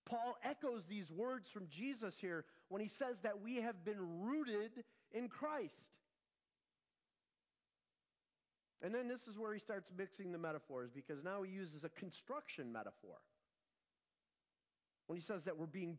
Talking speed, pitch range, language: 150 wpm, 200-275 Hz, English